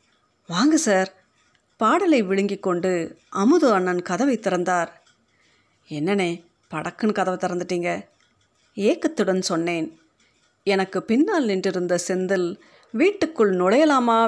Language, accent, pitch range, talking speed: Tamil, native, 180-225 Hz, 90 wpm